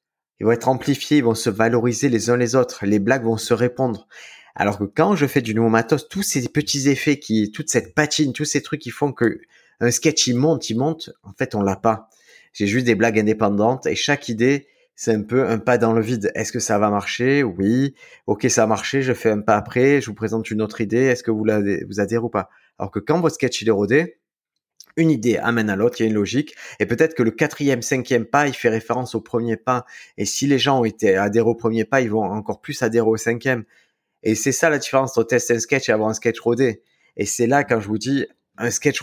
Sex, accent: male, French